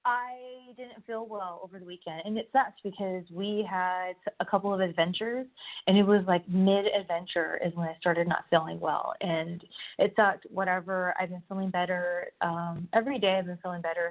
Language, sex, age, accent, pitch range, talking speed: English, female, 20-39, American, 175-215 Hz, 190 wpm